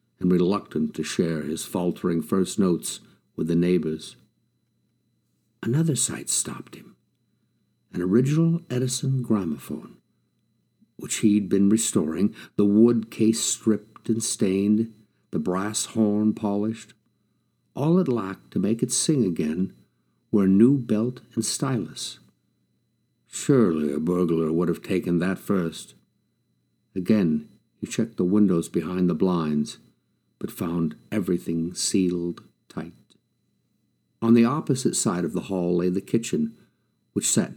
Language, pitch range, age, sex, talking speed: English, 80-110 Hz, 60-79, male, 130 wpm